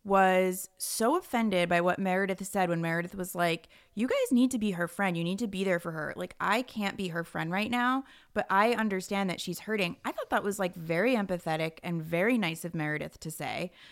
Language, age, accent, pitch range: English, 20-39, American, 180-250 Hz